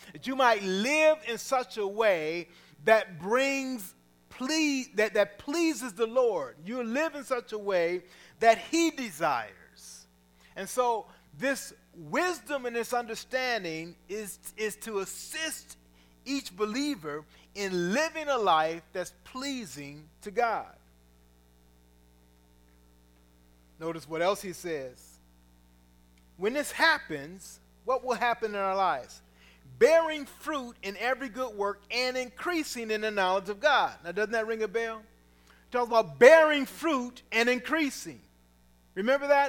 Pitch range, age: 170-260 Hz, 40-59